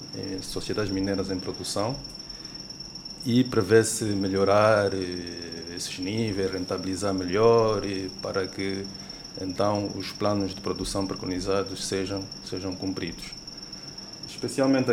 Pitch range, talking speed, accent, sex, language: 95-110 Hz, 95 wpm, Brazilian, male, Portuguese